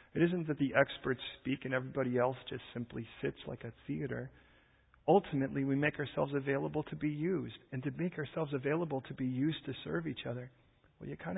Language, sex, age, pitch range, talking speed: English, male, 40-59, 125-160 Hz, 200 wpm